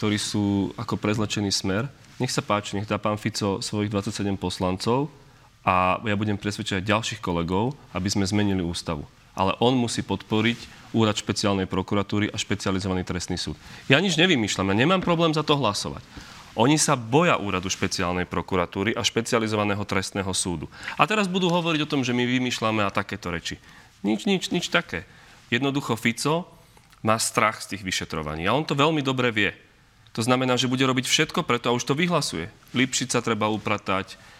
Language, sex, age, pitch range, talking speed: Slovak, male, 30-49, 100-125 Hz, 175 wpm